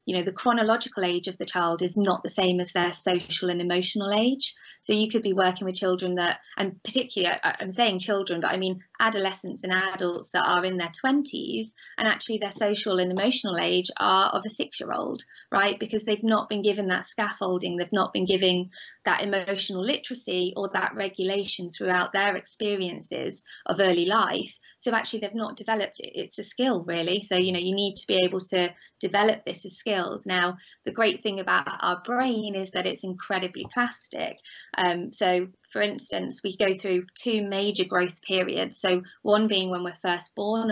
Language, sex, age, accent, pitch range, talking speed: English, female, 20-39, British, 180-210 Hz, 190 wpm